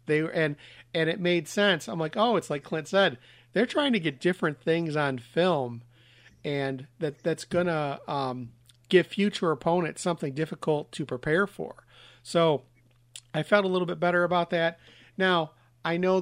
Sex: male